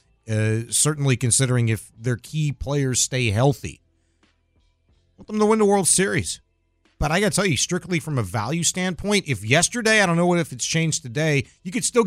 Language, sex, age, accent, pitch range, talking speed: English, male, 40-59, American, 110-170 Hz, 200 wpm